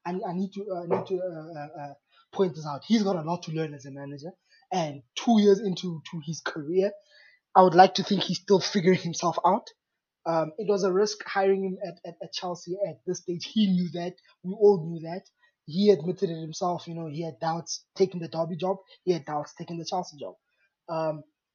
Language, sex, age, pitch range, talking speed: English, male, 20-39, 165-195 Hz, 225 wpm